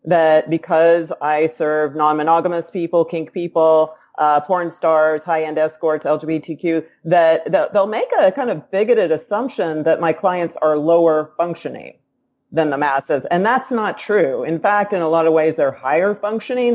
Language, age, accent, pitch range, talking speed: English, 30-49, American, 150-175 Hz, 160 wpm